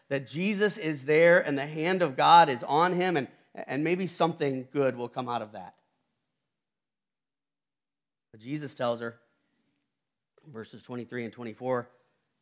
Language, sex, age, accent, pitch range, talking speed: English, male, 40-59, American, 145-180 Hz, 135 wpm